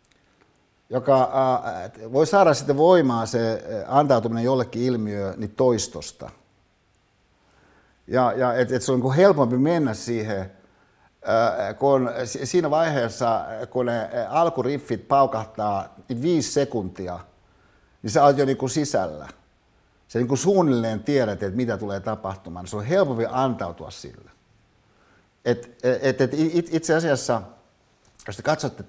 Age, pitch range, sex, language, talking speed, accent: 60-79, 100-130 Hz, male, Finnish, 120 wpm, native